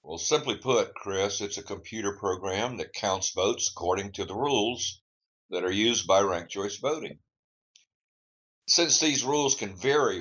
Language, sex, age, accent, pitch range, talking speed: English, male, 60-79, American, 85-115 Hz, 160 wpm